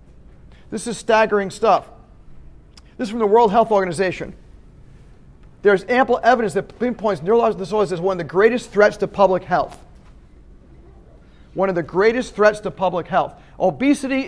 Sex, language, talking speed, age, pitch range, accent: male, English, 150 wpm, 50-69, 175-230 Hz, American